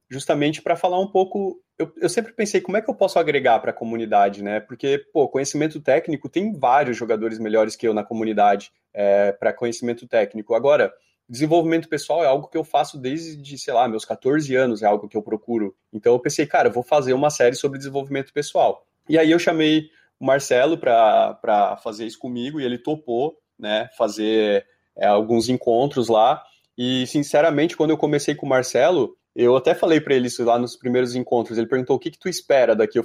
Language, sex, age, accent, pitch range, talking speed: Portuguese, male, 20-39, Brazilian, 120-160 Hz, 205 wpm